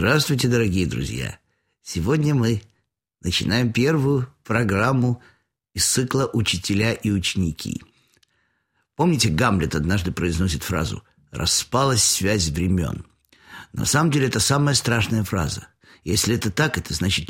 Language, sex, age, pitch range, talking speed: Russian, male, 50-69, 95-140 Hz, 115 wpm